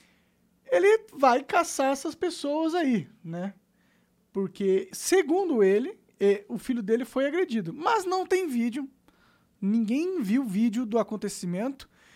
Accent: Brazilian